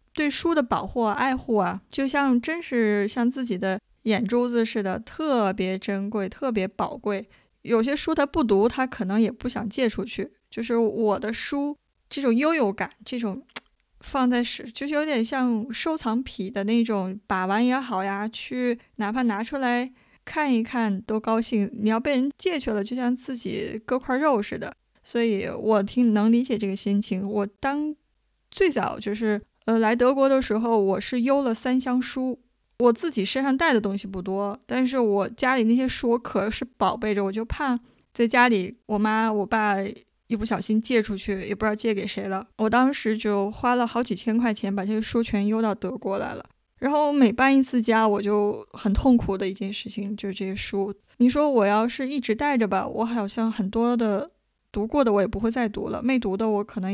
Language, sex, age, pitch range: Chinese, female, 20-39, 205-255 Hz